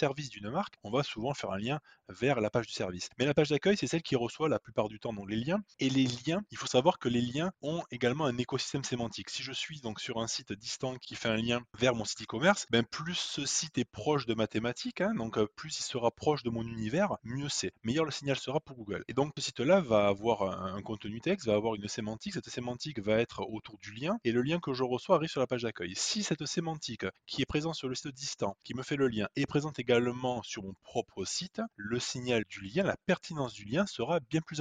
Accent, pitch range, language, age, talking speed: French, 115-155 Hz, French, 20-39, 260 wpm